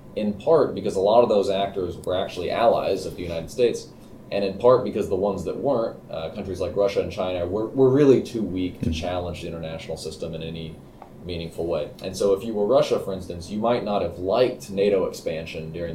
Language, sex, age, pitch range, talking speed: English, male, 20-39, 90-115 Hz, 220 wpm